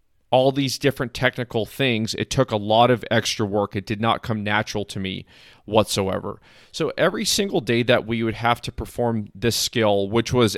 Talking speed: 195 wpm